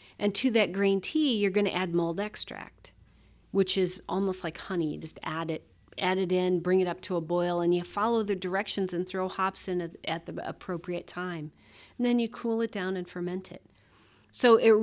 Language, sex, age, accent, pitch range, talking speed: English, female, 40-59, American, 165-205 Hz, 215 wpm